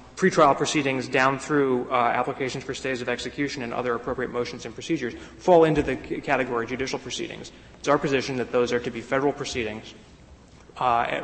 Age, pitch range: 20-39, 120-140 Hz